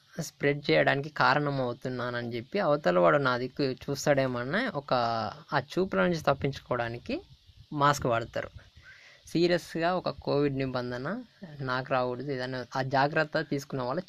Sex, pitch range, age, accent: female, 125-165 Hz, 20-39, native